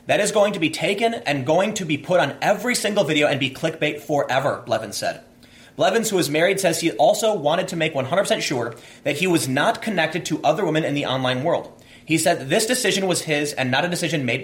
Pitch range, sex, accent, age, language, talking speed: 135-185 Hz, male, American, 30-49, English, 235 wpm